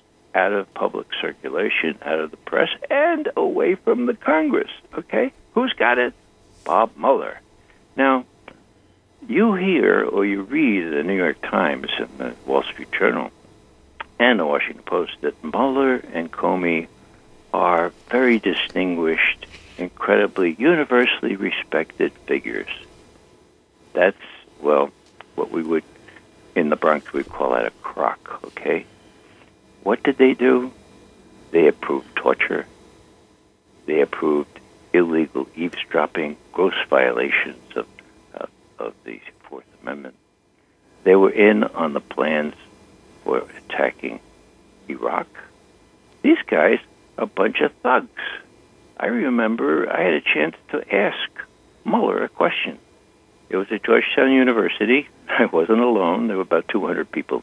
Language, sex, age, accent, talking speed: English, male, 60-79, American, 125 wpm